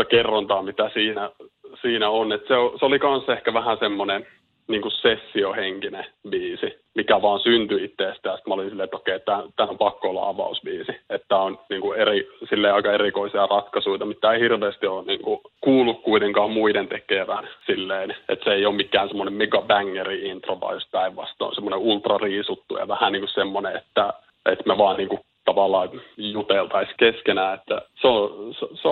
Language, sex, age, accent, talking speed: Finnish, male, 30-49, native, 165 wpm